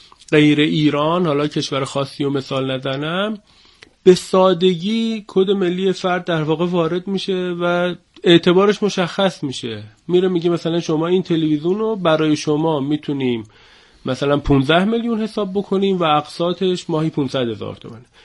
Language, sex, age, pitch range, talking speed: Persian, male, 30-49, 145-195 Hz, 140 wpm